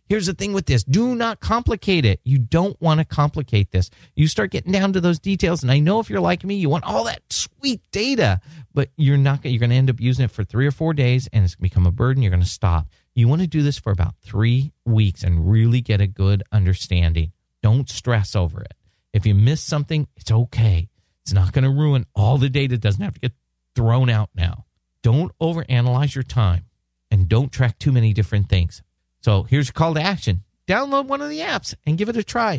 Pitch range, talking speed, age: 105-160 Hz, 240 wpm, 40-59